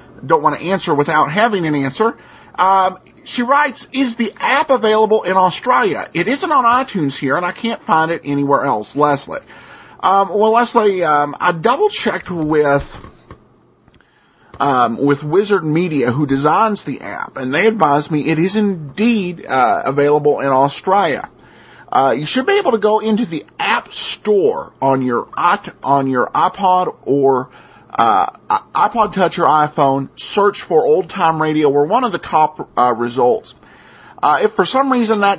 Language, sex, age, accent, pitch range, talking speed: English, male, 40-59, American, 145-215 Hz, 165 wpm